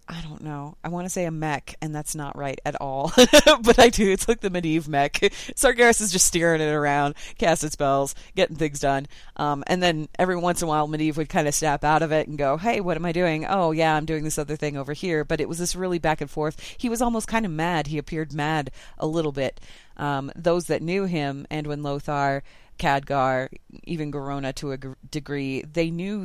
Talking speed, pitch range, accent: 230 wpm, 145-185 Hz, American